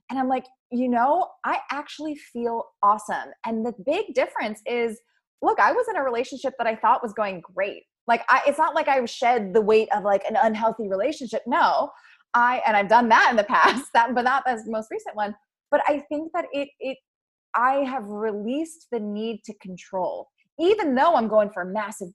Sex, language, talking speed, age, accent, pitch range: female, English, 205 wpm, 20-39, American, 215-285 Hz